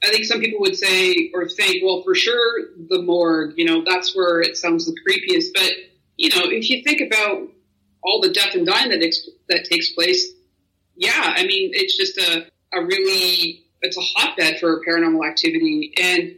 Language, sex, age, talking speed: English, female, 30-49, 190 wpm